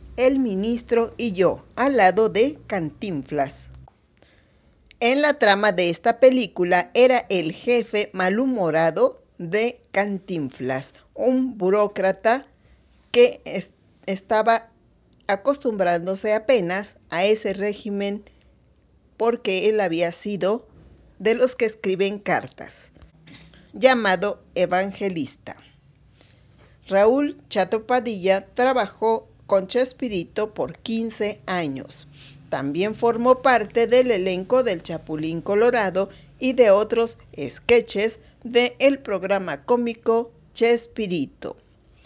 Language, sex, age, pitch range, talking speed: Spanish, female, 50-69, 190-240 Hz, 95 wpm